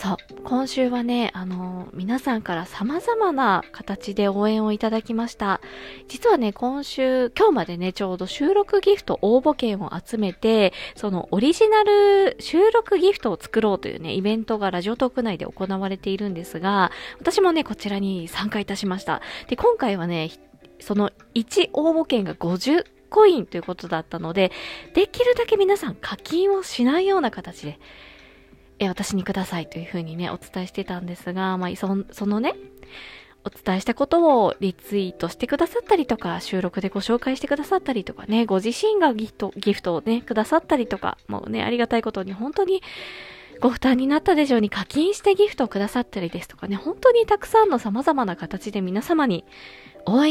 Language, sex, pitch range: Japanese, female, 190-310 Hz